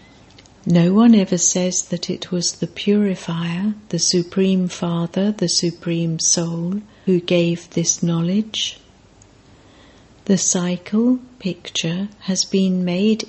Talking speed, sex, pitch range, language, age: 115 wpm, female, 165-195 Hz, English, 60-79